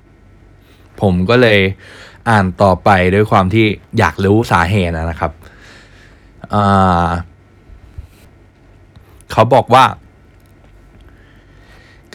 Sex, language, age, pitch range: male, Thai, 20-39, 90-110 Hz